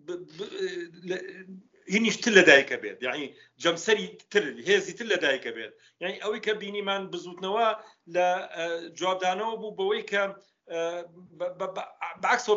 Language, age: Persian, 50-69